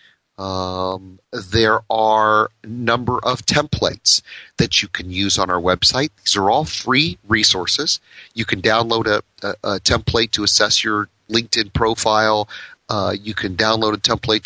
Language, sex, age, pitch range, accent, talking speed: English, male, 40-59, 100-120 Hz, American, 155 wpm